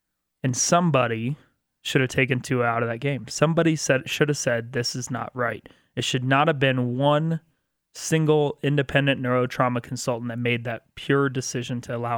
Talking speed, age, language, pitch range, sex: 170 wpm, 20-39, English, 115-145 Hz, male